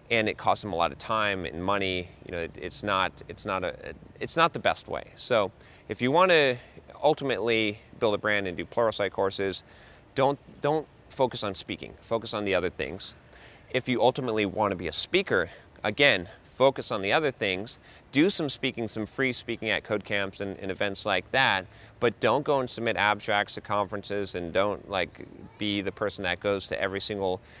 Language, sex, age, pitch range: English, male, 30-49, 95-115 Hz